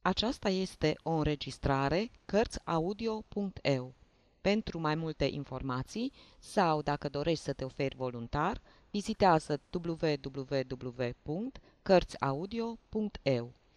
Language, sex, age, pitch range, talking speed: Romanian, female, 30-49, 125-190 Hz, 80 wpm